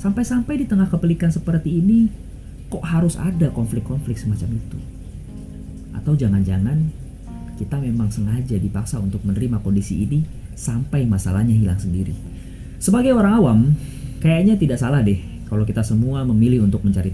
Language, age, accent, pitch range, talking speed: Indonesian, 30-49, native, 100-135 Hz, 135 wpm